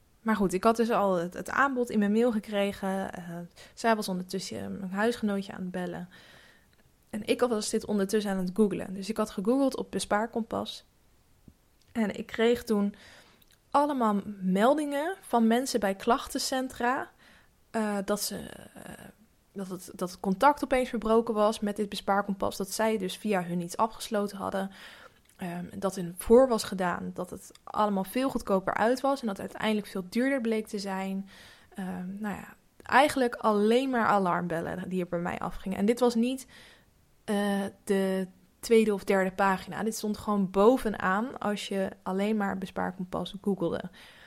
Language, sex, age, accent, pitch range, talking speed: Dutch, female, 10-29, Dutch, 195-230 Hz, 165 wpm